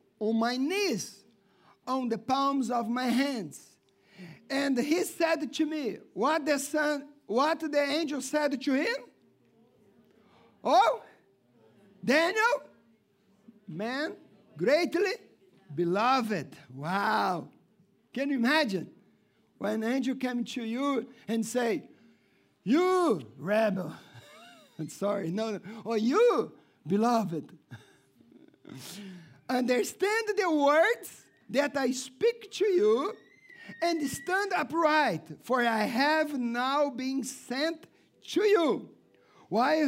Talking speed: 105 wpm